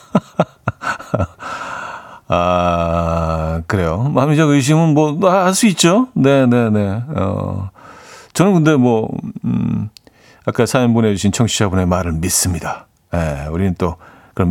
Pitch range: 95-140 Hz